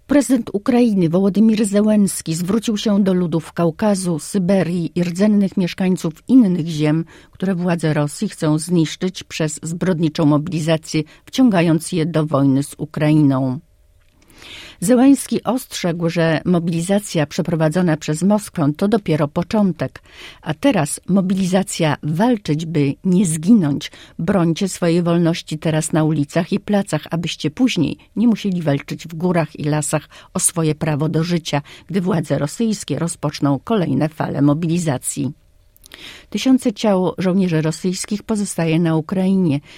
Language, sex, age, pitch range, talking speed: Polish, female, 50-69, 150-190 Hz, 125 wpm